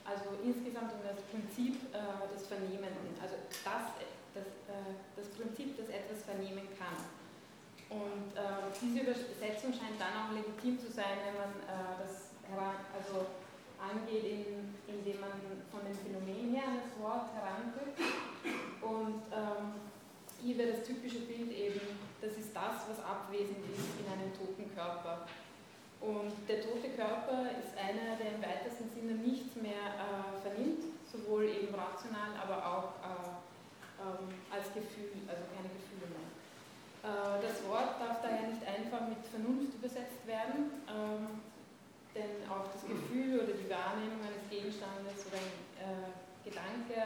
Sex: female